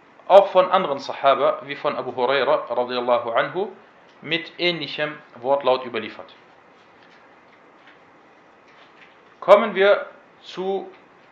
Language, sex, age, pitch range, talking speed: German, male, 40-59, 125-185 Hz, 80 wpm